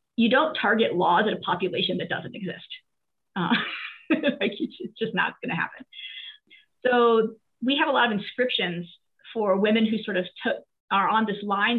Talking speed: 165 wpm